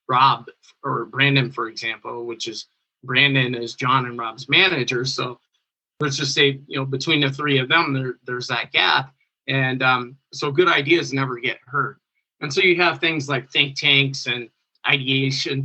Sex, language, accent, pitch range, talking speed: male, English, American, 130-145 Hz, 175 wpm